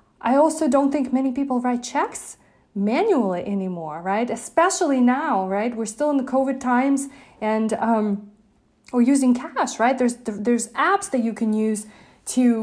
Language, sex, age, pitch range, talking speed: English, female, 30-49, 210-265 Hz, 160 wpm